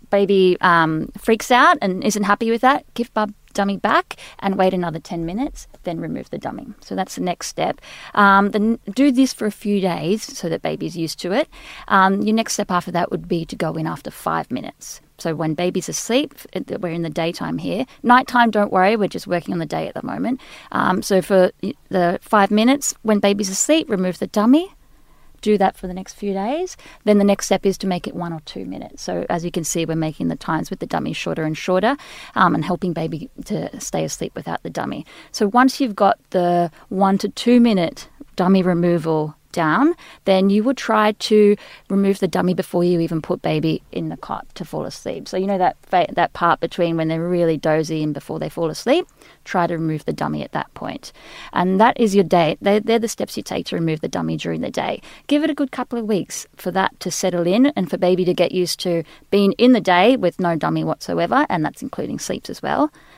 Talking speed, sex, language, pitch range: 225 wpm, female, English, 175-220 Hz